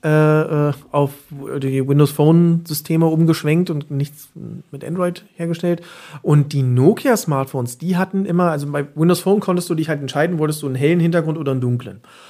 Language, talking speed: German, 150 wpm